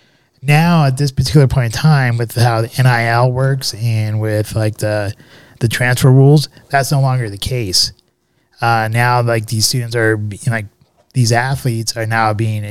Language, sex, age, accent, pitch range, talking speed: English, male, 20-39, American, 115-140 Hz, 175 wpm